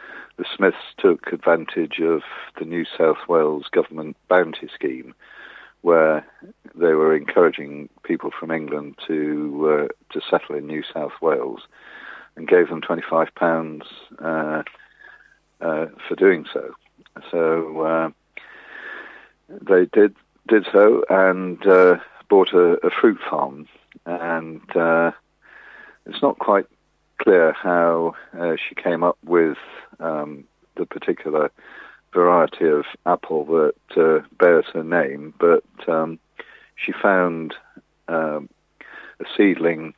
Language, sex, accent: English, male, British